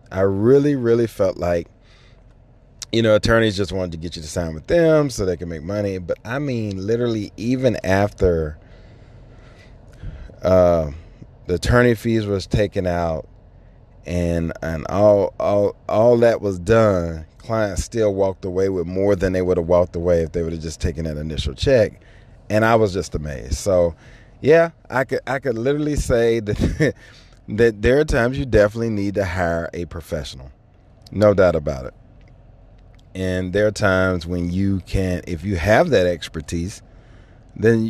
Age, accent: 30-49, American